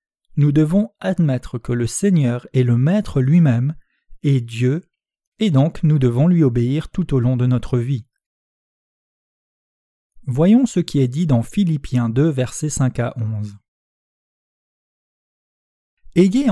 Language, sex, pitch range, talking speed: French, male, 125-180 Hz, 135 wpm